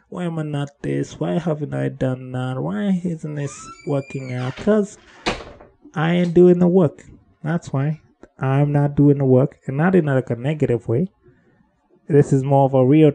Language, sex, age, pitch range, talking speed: English, male, 20-39, 130-170 Hz, 185 wpm